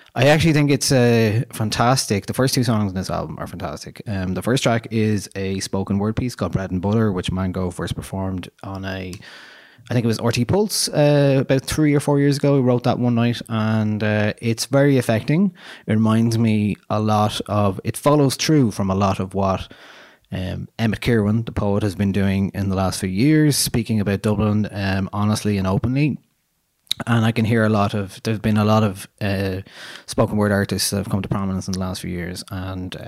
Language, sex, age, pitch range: English, male, 20-39, 95-120 Hz